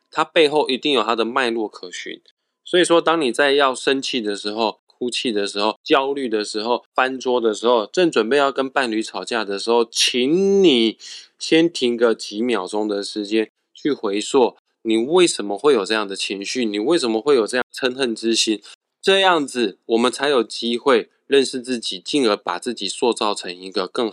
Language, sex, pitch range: Chinese, male, 110-145 Hz